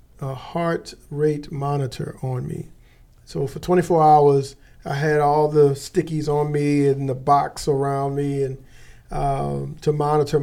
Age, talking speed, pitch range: 40-59, 150 wpm, 130-150 Hz